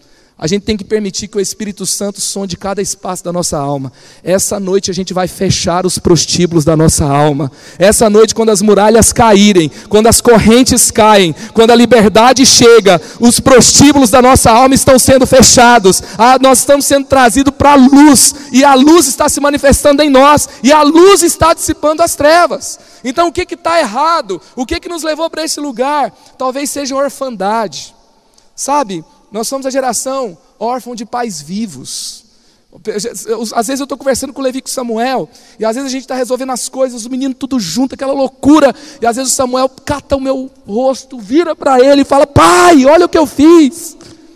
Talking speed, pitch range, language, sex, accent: 195 wpm, 220-280 Hz, Portuguese, male, Brazilian